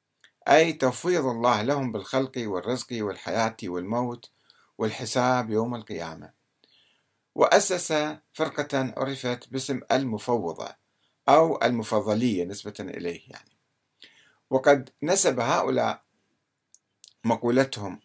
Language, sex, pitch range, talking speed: Arabic, male, 115-145 Hz, 85 wpm